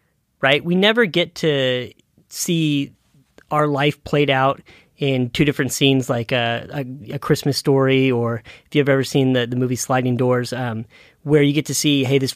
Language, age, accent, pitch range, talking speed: English, 30-49, American, 130-155 Hz, 185 wpm